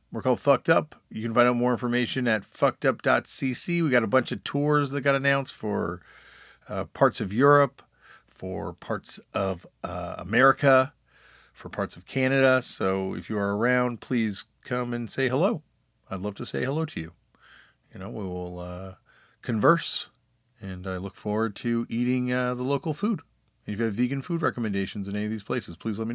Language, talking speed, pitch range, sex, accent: English, 190 wpm, 115-145 Hz, male, American